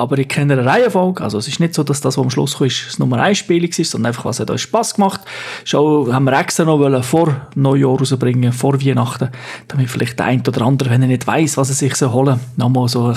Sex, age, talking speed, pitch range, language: male, 30-49, 255 wpm, 130-165 Hz, German